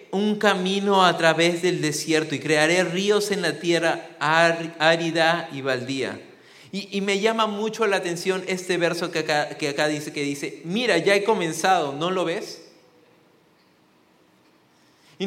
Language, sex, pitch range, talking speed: English, male, 150-185 Hz, 155 wpm